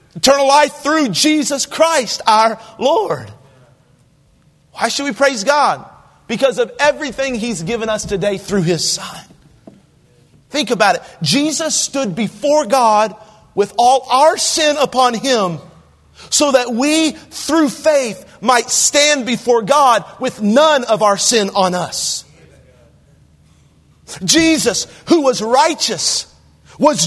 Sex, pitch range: male, 225-310 Hz